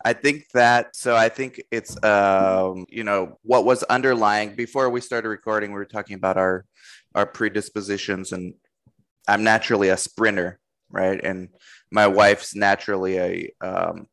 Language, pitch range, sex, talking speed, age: English, 95-115 Hz, male, 155 wpm, 20-39